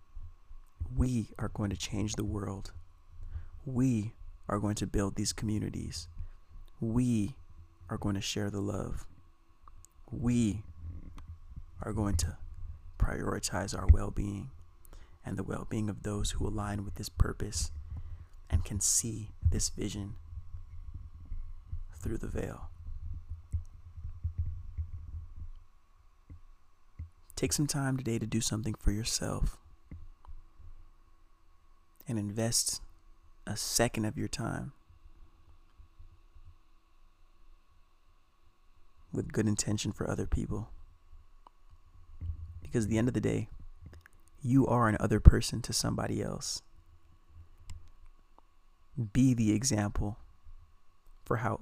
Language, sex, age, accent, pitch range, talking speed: English, male, 30-49, American, 85-105 Hz, 105 wpm